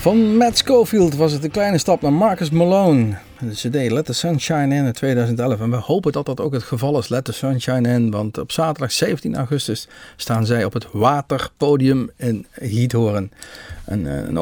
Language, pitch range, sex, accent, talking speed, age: Dutch, 105-140 Hz, male, Dutch, 185 wpm, 50-69